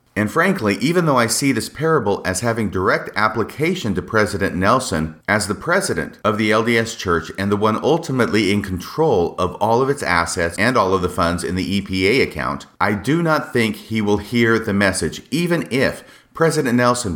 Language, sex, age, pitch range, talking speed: English, male, 40-59, 95-130 Hz, 190 wpm